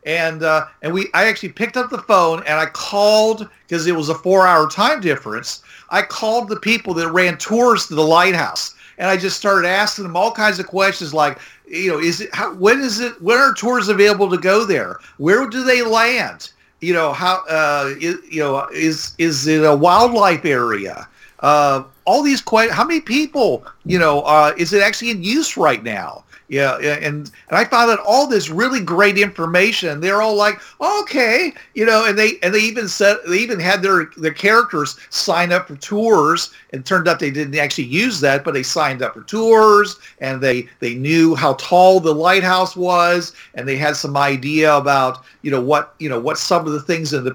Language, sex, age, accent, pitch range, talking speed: English, male, 50-69, American, 150-205 Hz, 215 wpm